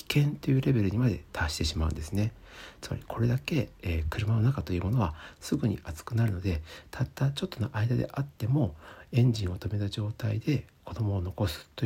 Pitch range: 85-125 Hz